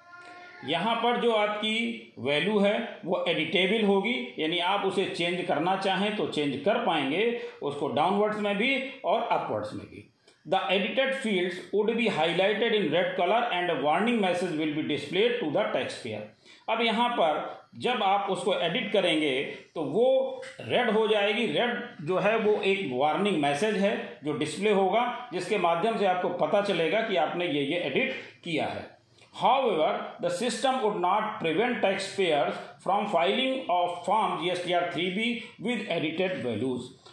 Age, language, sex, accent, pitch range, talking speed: 40-59, Hindi, male, native, 175-225 Hz, 170 wpm